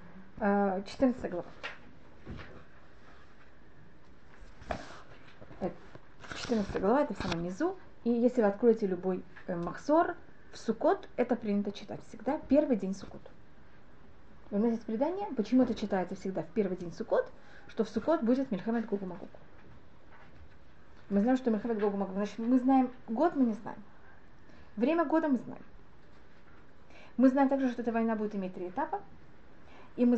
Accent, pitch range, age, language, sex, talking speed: native, 205-270 Hz, 30-49, Russian, female, 135 wpm